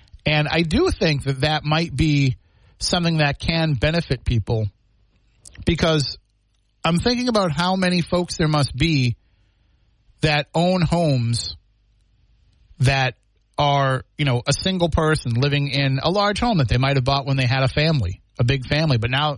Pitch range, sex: 110-155 Hz, male